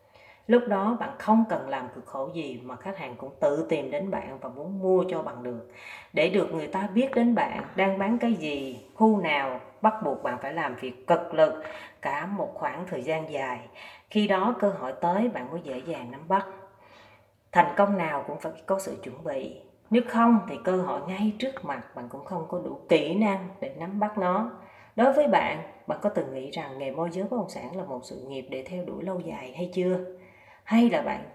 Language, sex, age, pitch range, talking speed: Vietnamese, female, 30-49, 145-210 Hz, 225 wpm